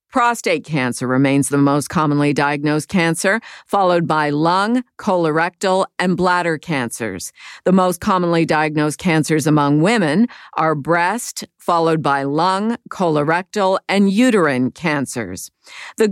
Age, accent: 50-69, American